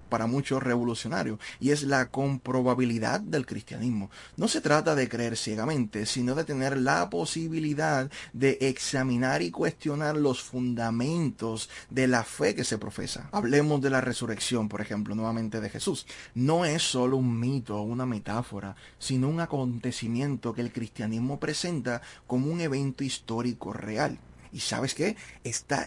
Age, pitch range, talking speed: 30-49, 115-140 Hz, 150 wpm